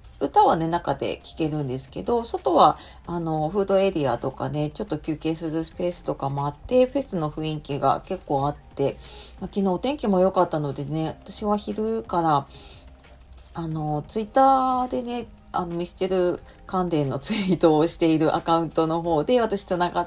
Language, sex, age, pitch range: Japanese, female, 40-59, 150-215 Hz